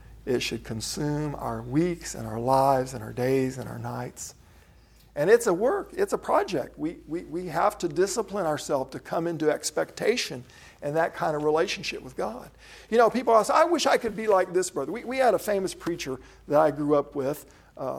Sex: male